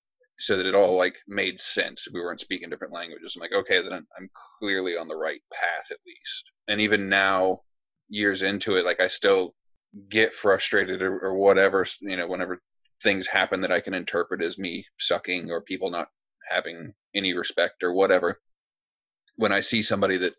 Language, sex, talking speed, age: English, male, 185 wpm, 20-39